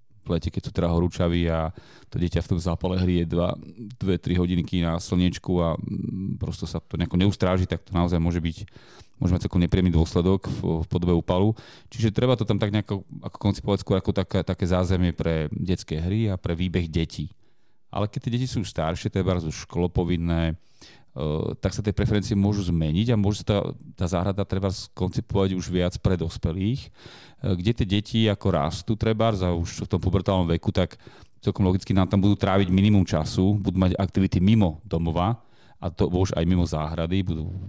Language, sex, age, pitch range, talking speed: Slovak, male, 30-49, 85-105 Hz, 180 wpm